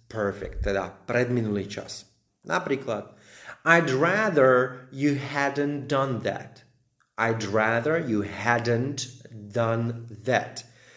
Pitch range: 100-125 Hz